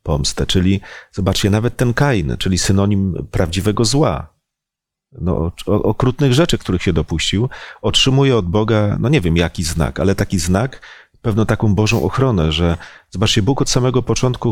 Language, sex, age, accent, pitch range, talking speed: Polish, male, 40-59, native, 90-115 Hz, 155 wpm